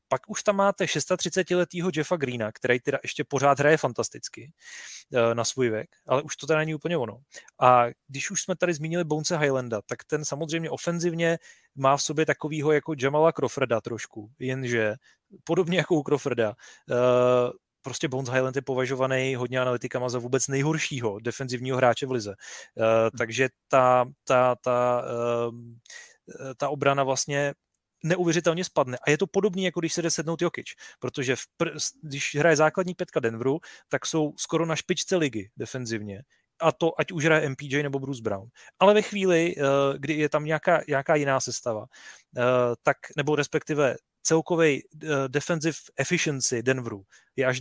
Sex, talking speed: male, 160 wpm